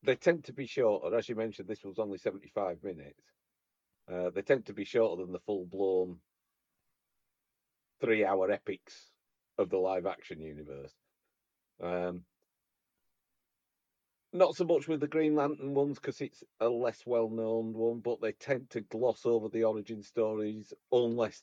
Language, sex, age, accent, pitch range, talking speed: English, male, 40-59, British, 100-140 Hz, 160 wpm